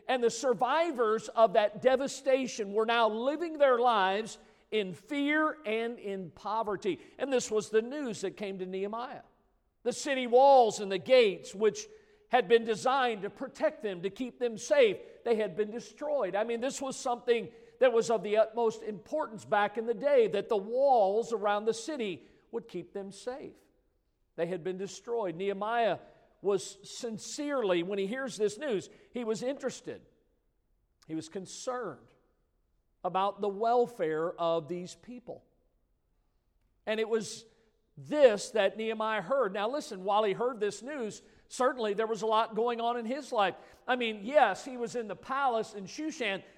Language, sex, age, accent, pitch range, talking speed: English, male, 50-69, American, 210-260 Hz, 165 wpm